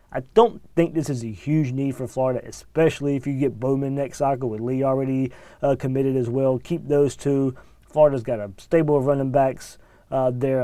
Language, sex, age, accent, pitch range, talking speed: English, male, 30-49, American, 125-145 Hz, 205 wpm